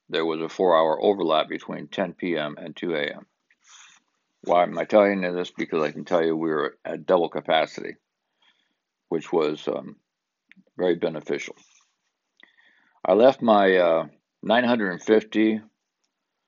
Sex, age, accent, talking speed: male, 60-79, American, 140 wpm